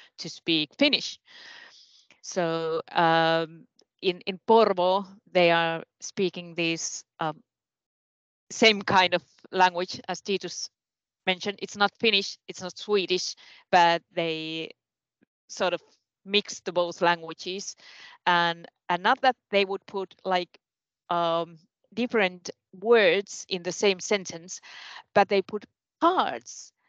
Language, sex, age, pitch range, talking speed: Finnish, female, 30-49, 180-230 Hz, 120 wpm